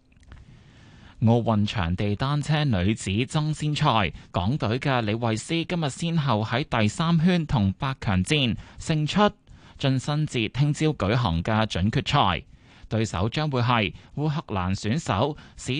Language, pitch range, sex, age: Chinese, 105-145 Hz, male, 20-39